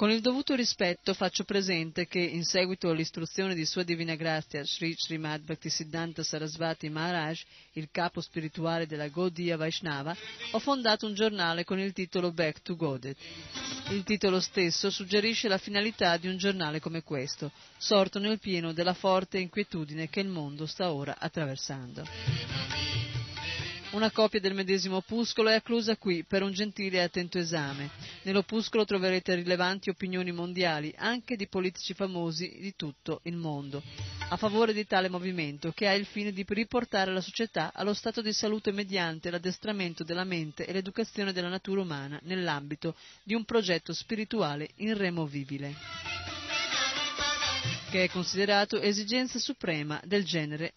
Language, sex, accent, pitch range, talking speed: Italian, female, native, 160-200 Hz, 145 wpm